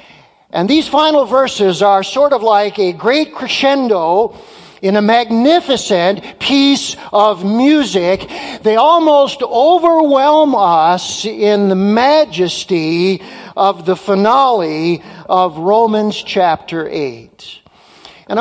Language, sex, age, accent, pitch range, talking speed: English, male, 50-69, American, 185-240 Hz, 105 wpm